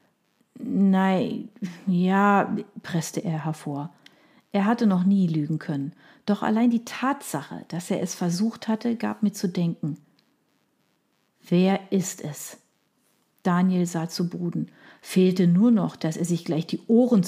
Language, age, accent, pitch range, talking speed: German, 50-69, German, 165-220 Hz, 140 wpm